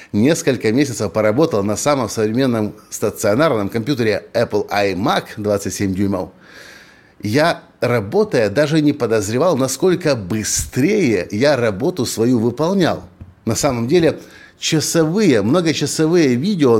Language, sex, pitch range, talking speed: Russian, male, 115-155 Hz, 105 wpm